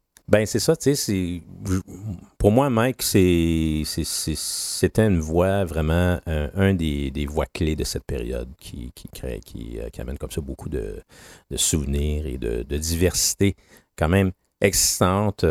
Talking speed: 165 wpm